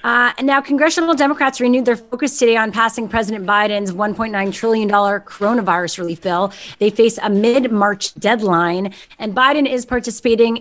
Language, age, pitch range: English, 30-49, 205-260 Hz